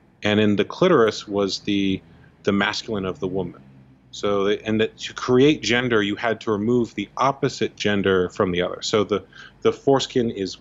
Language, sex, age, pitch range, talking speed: English, male, 30-49, 95-120 Hz, 180 wpm